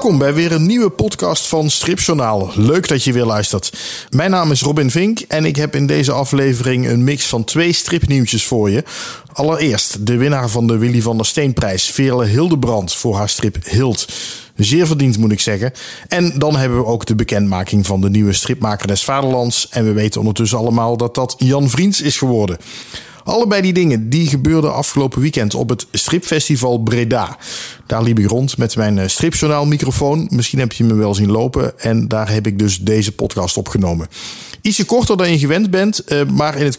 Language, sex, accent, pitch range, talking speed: Dutch, male, Dutch, 110-150 Hz, 190 wpm